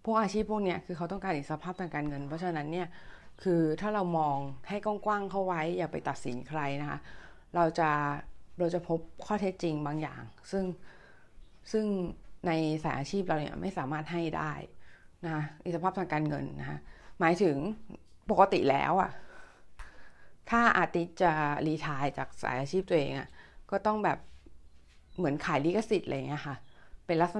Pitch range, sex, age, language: 140-185 Hz, female, 20-39, Thai